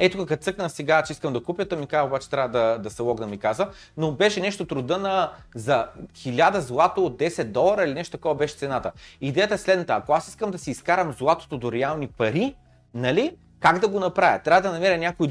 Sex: male